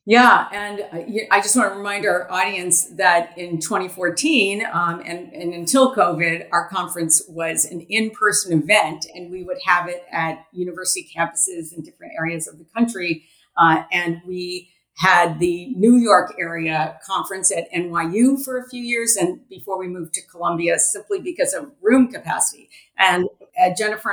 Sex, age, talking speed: female, 50-69, 165 wpm